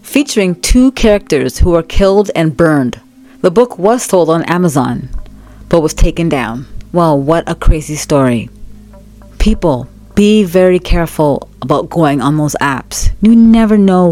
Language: English